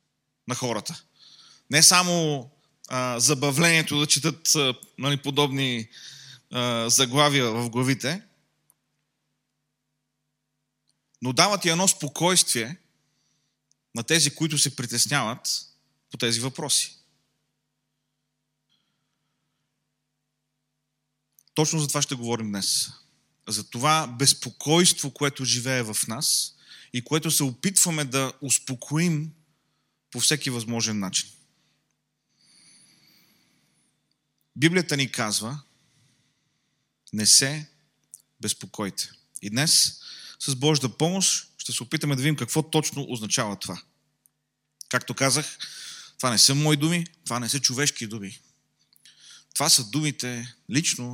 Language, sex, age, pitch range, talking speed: Bulgarian, male, 30-49, 125-155 Hz, 100 wpm